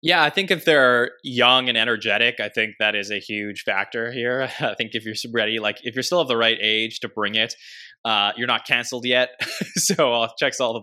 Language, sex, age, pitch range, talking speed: English, male, 20-39, 110-150 Hz, 240 wpm